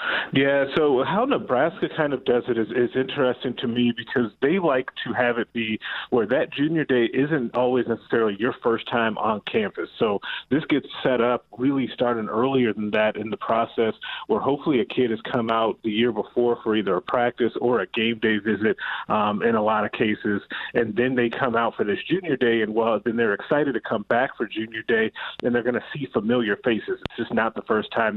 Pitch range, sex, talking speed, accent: 110-125 Hz, male, 220 wpm, American